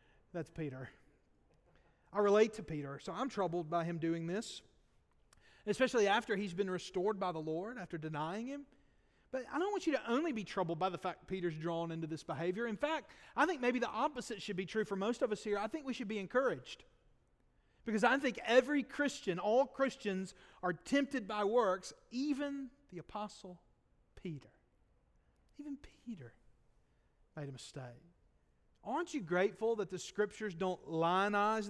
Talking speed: 170 wpm